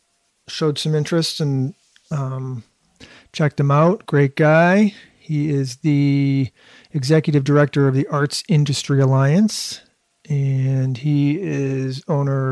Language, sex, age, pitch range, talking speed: English, male, 40-59, 135-160 Hz, 115 wpm